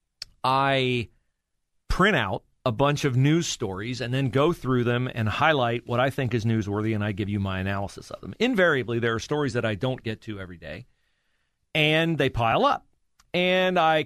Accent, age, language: American, 40-59, English